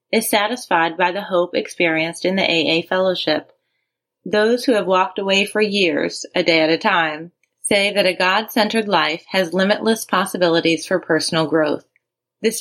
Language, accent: English, American